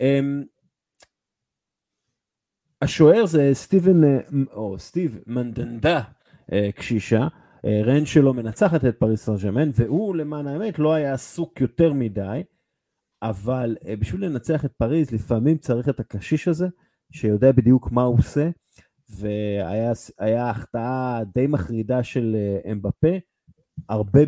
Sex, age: male, 30-49